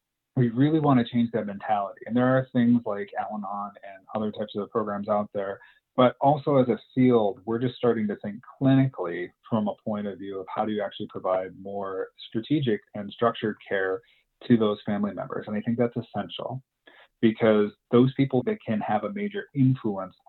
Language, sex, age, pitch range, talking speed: English, male, 30-49, 105-130 Hz, 190 wpm